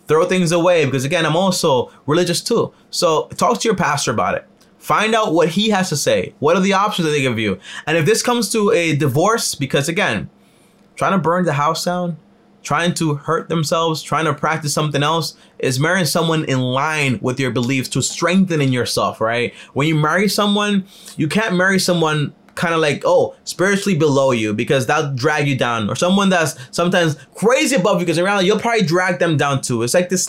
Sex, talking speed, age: male, 210 wpm, 20-39